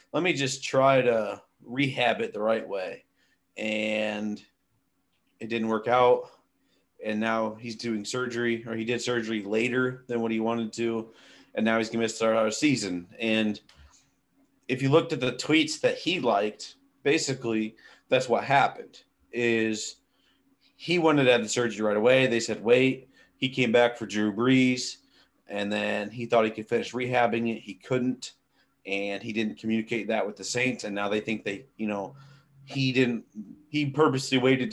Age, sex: 30-49, male